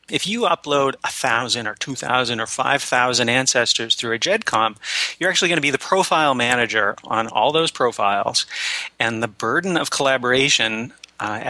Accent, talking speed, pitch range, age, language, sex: American, 155 wpm, 115-140 Hz, 30-49, English, male